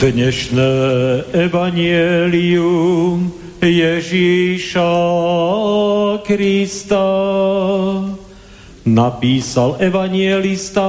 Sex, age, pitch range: male, 50-69, 170-195 Hz